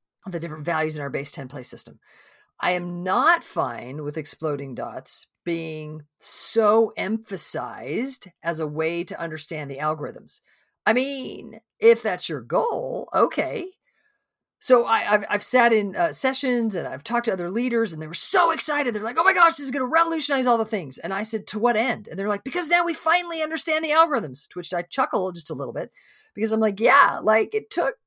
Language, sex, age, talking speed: English, female, 40-59, 200 wpm